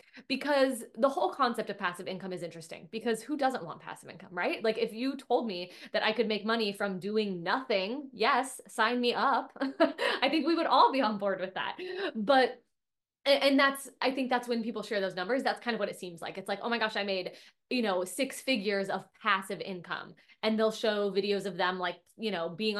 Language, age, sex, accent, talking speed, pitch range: English, 20-39, female, American, 225 wpm, 195-250 Hz